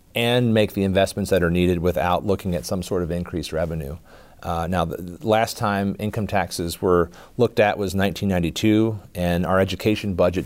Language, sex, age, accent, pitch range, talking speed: English, male, 40-59, American, 90-105 Hz, 180 wpm